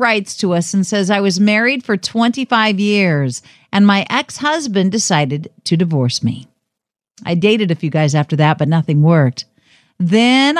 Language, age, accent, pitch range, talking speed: English, 50-69, American, 155-215 Hz, 165 wpm